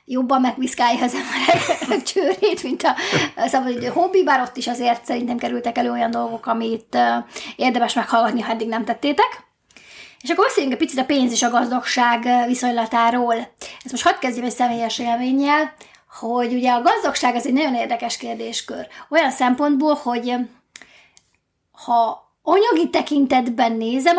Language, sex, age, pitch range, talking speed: Hungarian, female, 20-39, 230-275 Hz, 145 wpm